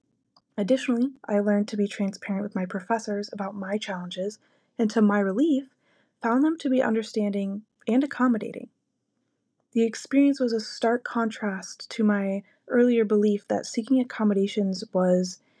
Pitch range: 190-225 Hz